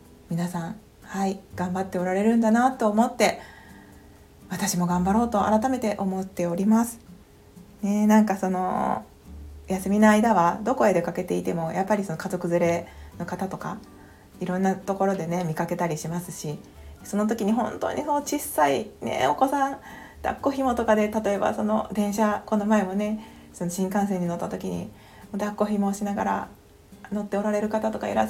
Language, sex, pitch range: Japanese, female, 175-220 Hz